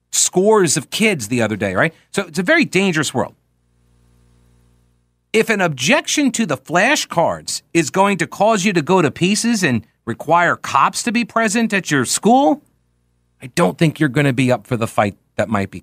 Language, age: English, 40-59